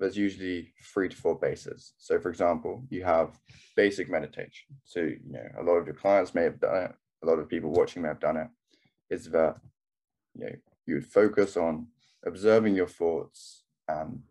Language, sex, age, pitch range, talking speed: English, male, 10-29, 90-135 Hz, 190 wpm